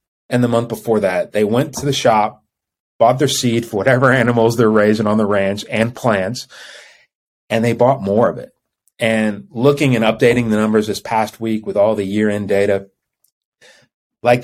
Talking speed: 185 wpm